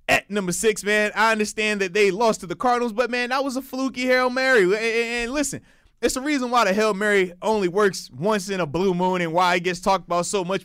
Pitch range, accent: 160-205 Hz, American